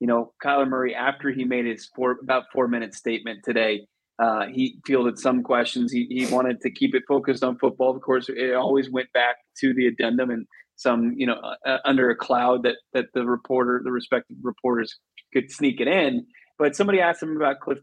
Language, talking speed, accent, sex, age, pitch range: English, 210 wpm, American, male, 20-39, 120-140 Hz